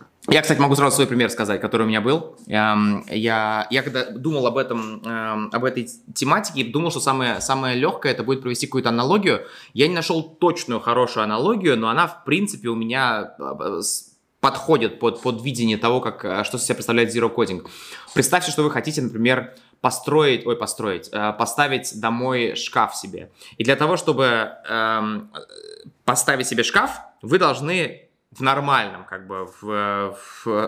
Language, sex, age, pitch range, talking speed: Russian, male, 20-39, 110-150 Hz, 155 wpm